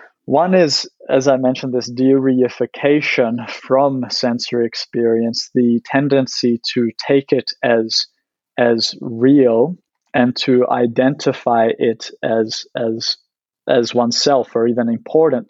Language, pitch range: English, 120-140 Hz